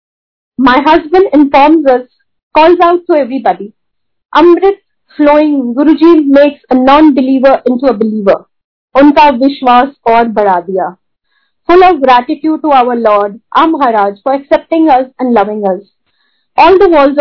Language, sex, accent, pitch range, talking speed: Hindi, female, native, 230-310 Hz, 135 wpm